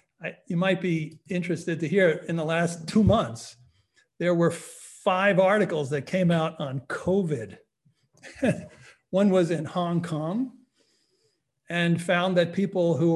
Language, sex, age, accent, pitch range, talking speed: English, male, 60-79, American, 150-185 Hz, 140 wpm